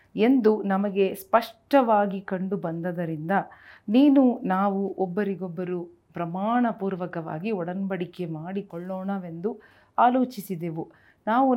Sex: female